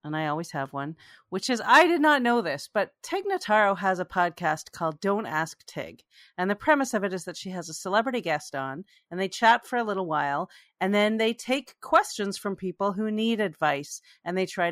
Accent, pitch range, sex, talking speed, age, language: American, 170-235 Hz, female, 225 wpm, 40-59, English